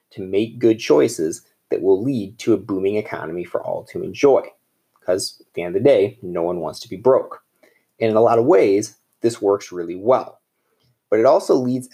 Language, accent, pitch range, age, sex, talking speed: English, American, 100-130 Hz, 30-49, male, 210 wpm